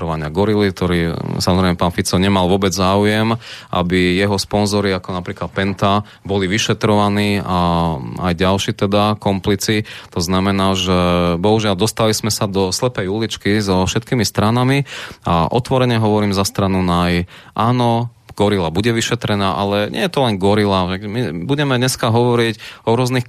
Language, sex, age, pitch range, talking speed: Slovak, male, 20-39, 100-120 Hz, 145 wpm